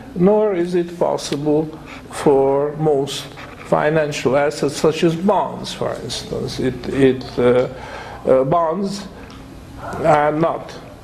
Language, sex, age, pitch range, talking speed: English, male, 50-69, 130-165 Hz, 110 wpm